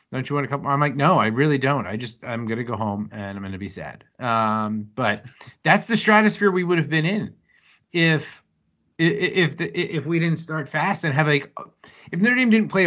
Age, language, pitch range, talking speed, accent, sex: 30-49, English, 115-170 Hz, 240 wpm, American, male